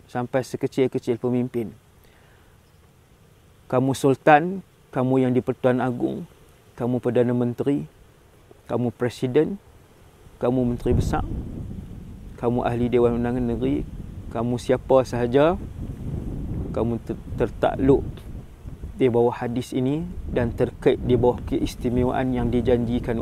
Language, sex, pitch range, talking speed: English, male, 120-130 Hz, 100 wpm